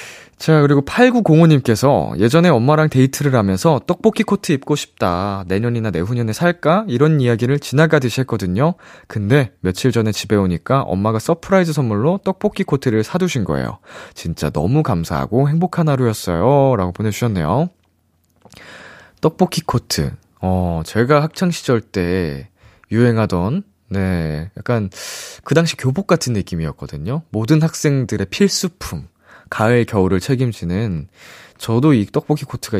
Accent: native